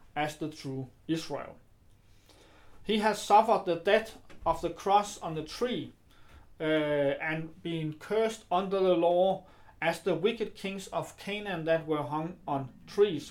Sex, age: male, 40-59